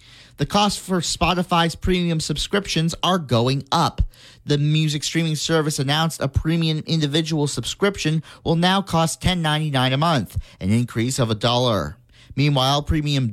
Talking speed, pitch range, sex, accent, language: 140 wpm, 130-165 Hz, male, American, English